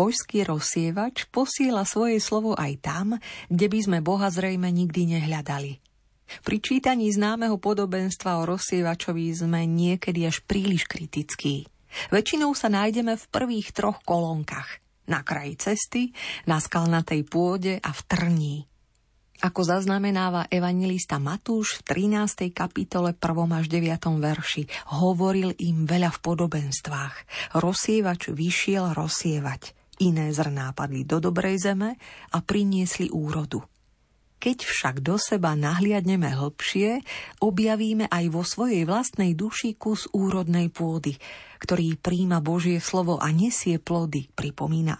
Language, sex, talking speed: Slovak, female, 125 wpm